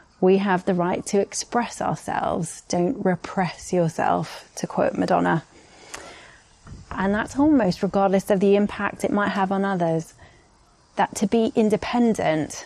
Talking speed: 140 wpm